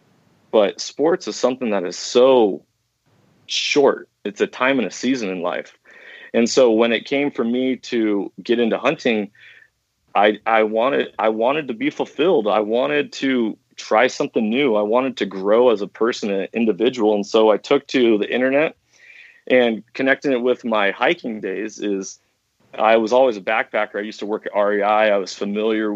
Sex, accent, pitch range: male, American, 105-115 Hz